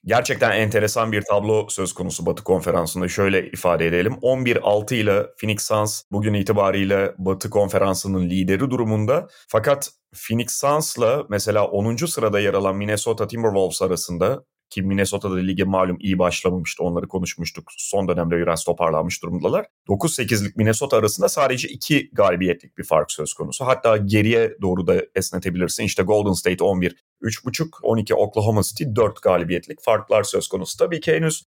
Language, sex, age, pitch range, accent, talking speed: Turkish, male, 30-49, 95-120 Hz, native, 145 wpm